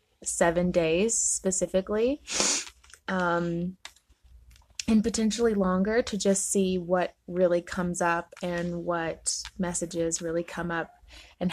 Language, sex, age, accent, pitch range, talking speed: English, female, 20-39, American, 175-205 Hz, 110 wpm